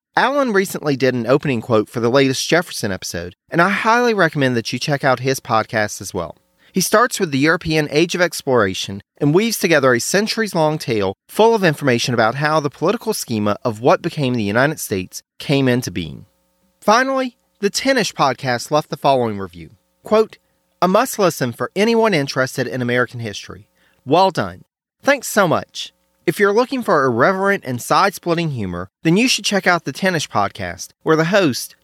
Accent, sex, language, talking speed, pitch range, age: American, male, English, 180 wpm, 115-185 Hz, 40-59